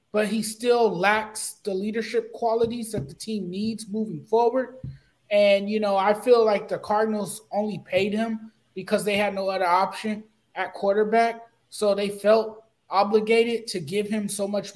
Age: 20-39